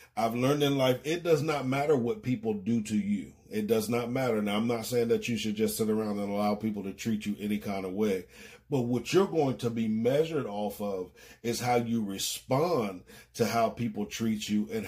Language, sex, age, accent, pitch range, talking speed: English, male, 40-59, American, 110-145 Hz, 225 wpm